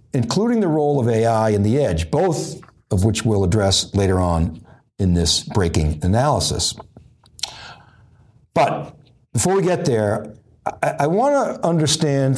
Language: English